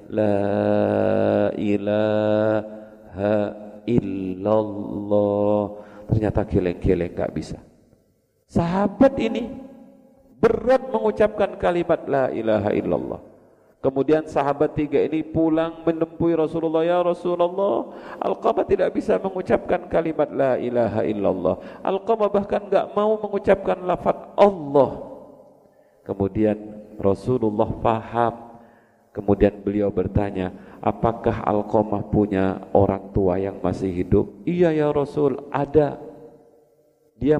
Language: Indonesian